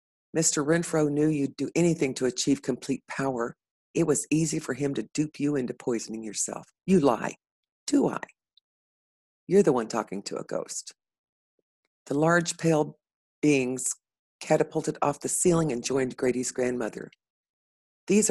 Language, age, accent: English, 50-69, American